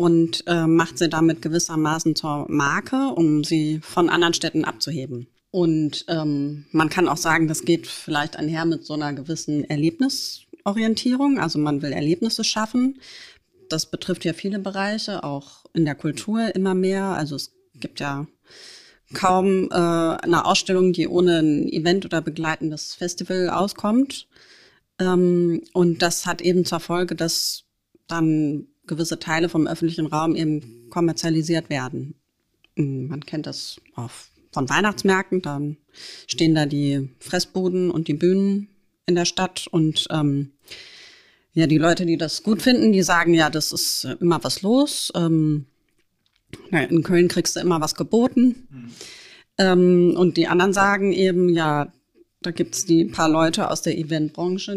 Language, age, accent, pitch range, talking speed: German, 30-49, German, 155-185 Hz, 150 wpm